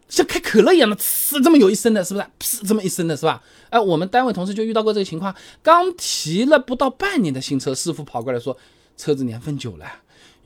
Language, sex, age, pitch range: Chinese, male, 20-39, 145-240 Hz